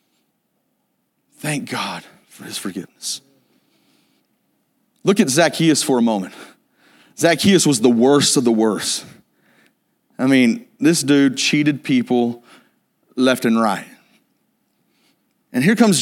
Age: 30-49